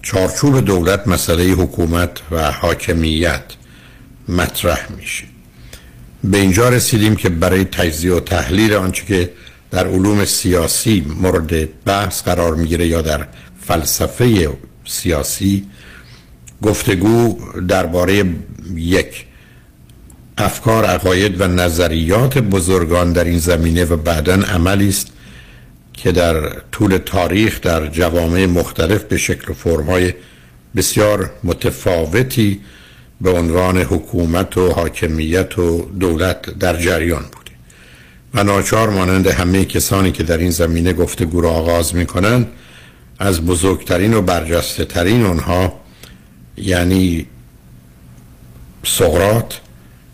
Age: 60-79